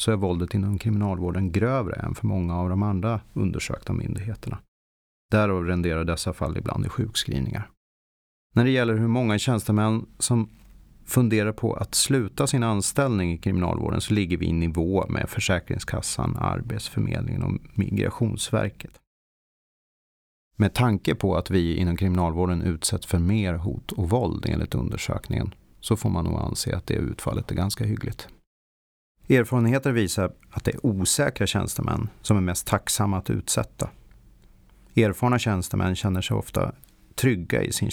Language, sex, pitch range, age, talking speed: Swedish, male, 95-115 Hz, 30-49, 145 wpm